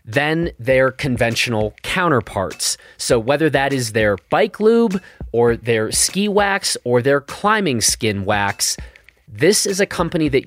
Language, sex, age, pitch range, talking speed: English, male, 30-49, 110-155 Hz, 145 wpm